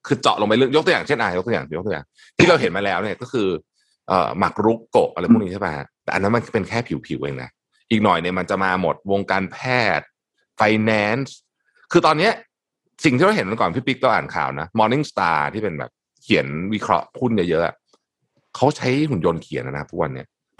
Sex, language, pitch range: male, Thai, 100-135 Hz